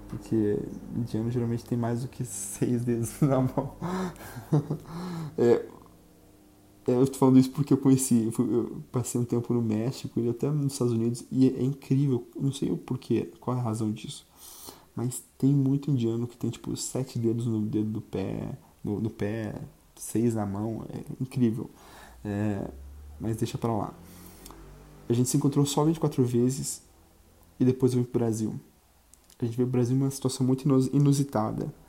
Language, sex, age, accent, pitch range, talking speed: Portuguese, male, 20-39, Brazilian, 105-130 Hz, 170 wpm